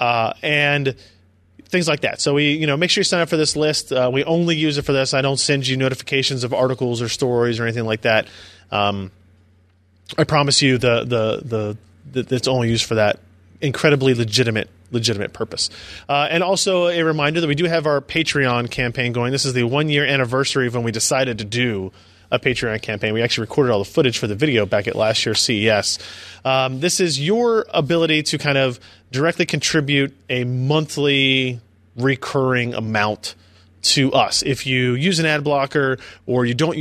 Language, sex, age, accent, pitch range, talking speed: English, male, 30-49, American, 115-145 Hz, 200 wpm